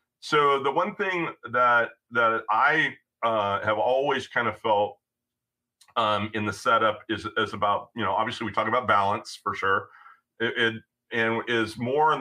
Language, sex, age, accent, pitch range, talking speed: English, male, 40-59, American, 110-135 Hz, 170 wpm